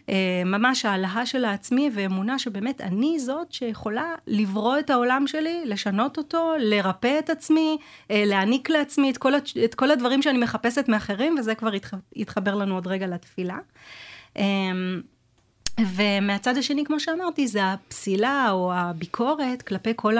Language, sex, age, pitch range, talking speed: Hebrew, female, 30-49, 185-225 Hz, 135 wpm